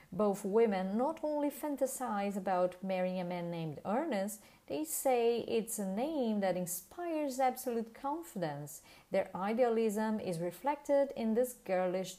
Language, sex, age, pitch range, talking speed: English, female, 30-49, 185-265 Hz, 135 wpm